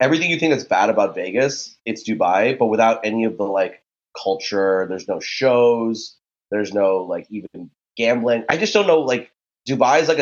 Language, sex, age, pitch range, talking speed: English, male, 20-39, 100-120 Hz, 190 wpm